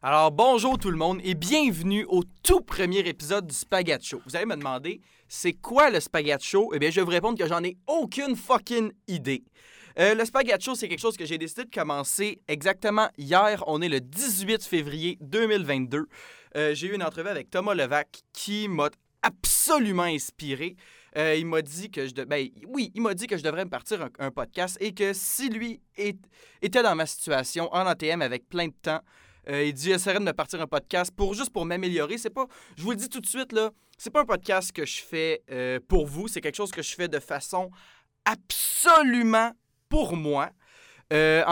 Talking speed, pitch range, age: 210 wpm, 160-225 Hz, 20-39